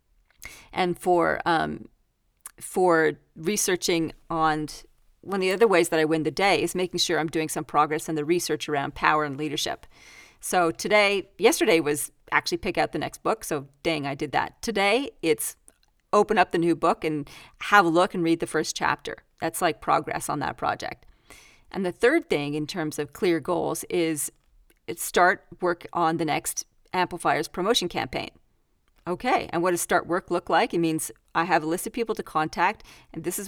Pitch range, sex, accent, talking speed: 155-200 Hz, female, American, 190 wpm